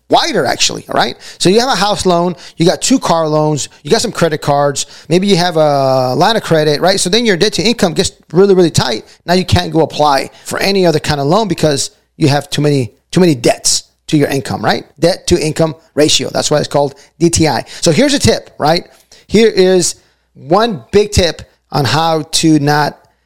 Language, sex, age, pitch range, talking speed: English, male, 30-49, 150-190 Hz, 215 wpm